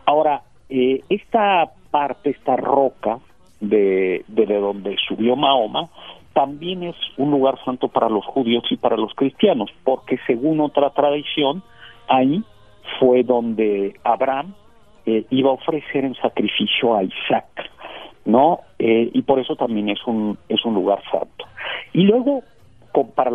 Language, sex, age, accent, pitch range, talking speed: Spanish, male, 50-69, Mexican, 110-140 Hz, 145 wpm